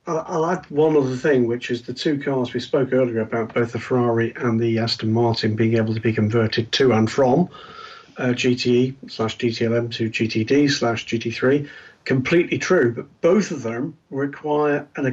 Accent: British